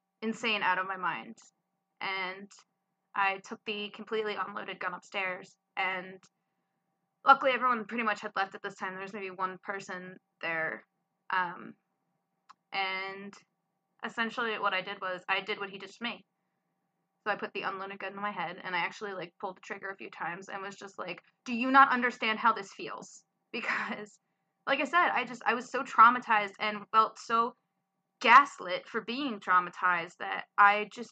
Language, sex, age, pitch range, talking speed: English, female, 20-39, 195-220 Hz, 175 wpm